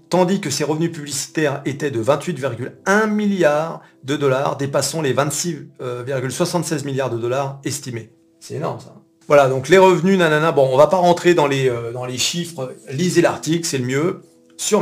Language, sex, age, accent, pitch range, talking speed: French, male, 40-59, French, 130-165 Hz, 180 wpm